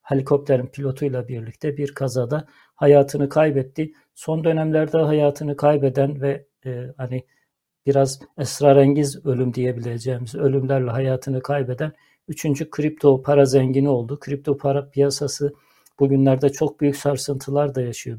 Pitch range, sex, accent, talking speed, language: 130-145 Hz, male, native, 115 wpm, Turkish